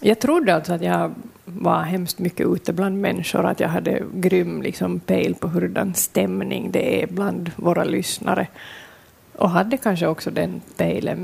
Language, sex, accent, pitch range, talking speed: Swedish, female, native, 175-200 Hz, 165 wpm